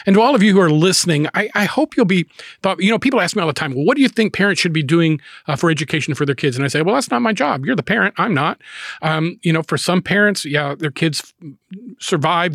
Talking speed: 285 wpm